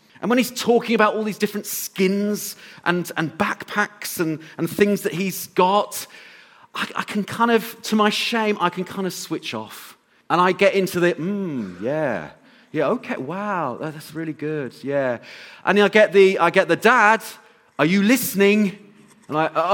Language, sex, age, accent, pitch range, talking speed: English, male, 30-49, British, 155-210 Hz, 180 wpm